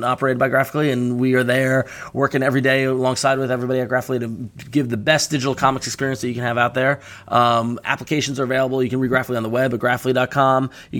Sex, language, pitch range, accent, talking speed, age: male, English, 115-135 Hz, American, 230 wpm, 20-39